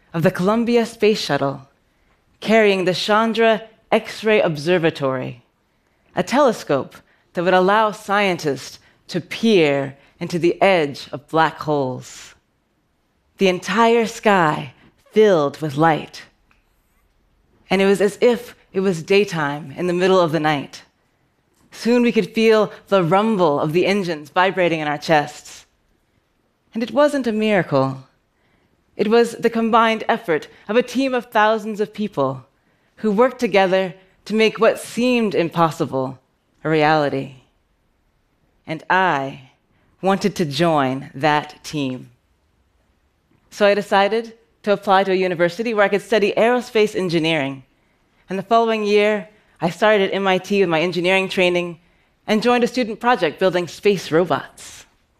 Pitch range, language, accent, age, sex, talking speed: 145-215 Hz, French, American, 30-49, female, 135 wpm